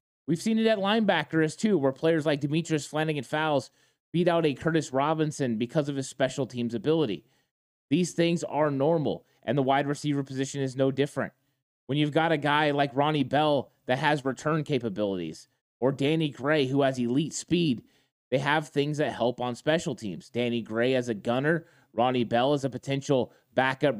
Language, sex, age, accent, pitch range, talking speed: English, male, 20-39, American, 130-160 Hz, 185 wpm